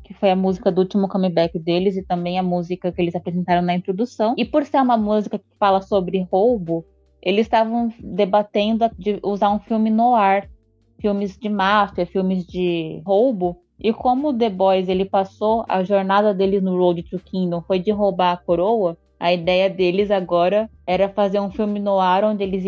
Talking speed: 190 wpm